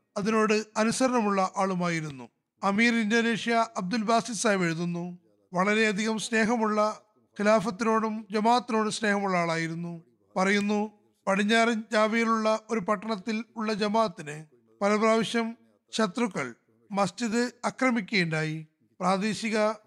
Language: Malayalam